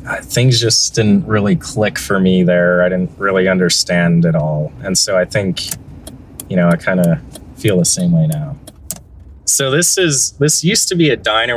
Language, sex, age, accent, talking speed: English, male, 30-49, American, 190 wpm